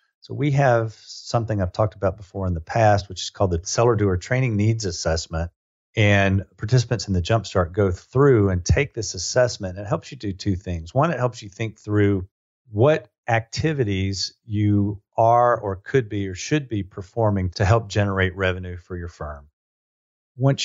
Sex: male